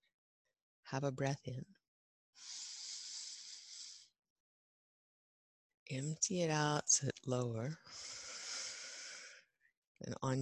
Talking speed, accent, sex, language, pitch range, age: 65 wpm, American, female, English, 130-175 Hz, 30-49